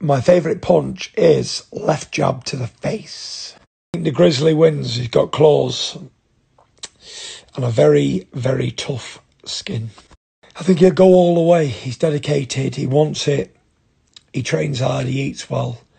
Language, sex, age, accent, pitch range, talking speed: English, male, 40-59, British, 120-155 Hz, 155 wpm